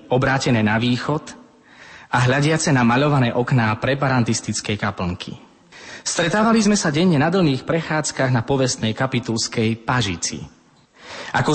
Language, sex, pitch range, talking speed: Slovak, male, 110-140 Hz, 115 wpm